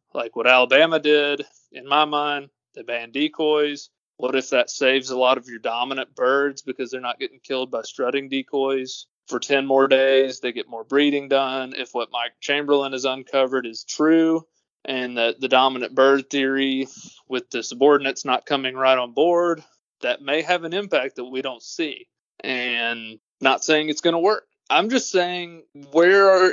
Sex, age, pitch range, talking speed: male, 30-49, 125-155 Hz, 180 wpm